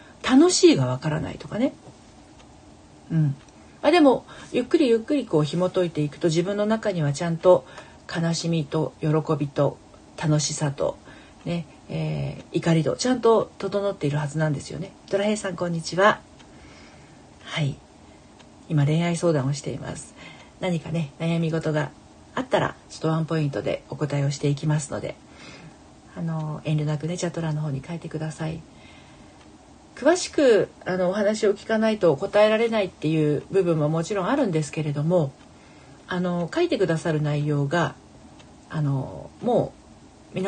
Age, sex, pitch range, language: 40-59, female, 150-195 Hz, Japanese